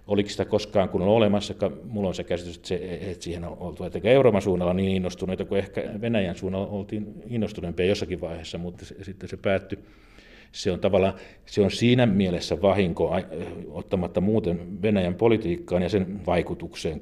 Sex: male